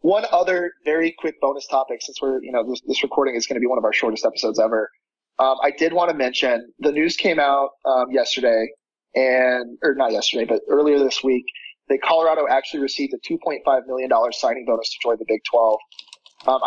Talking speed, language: 210 wpm, English